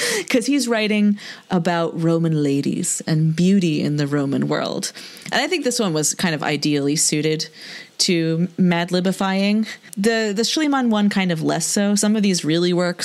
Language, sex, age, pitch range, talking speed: English, female, 30-49, 165-210 Hz, 175 wpm